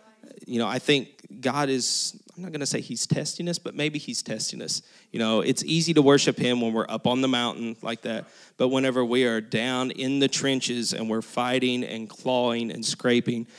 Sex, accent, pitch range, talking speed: male, American, 120-150 Hz, 215 wpm